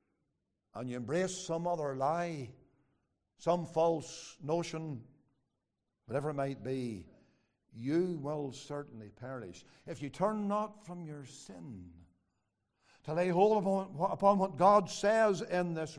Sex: male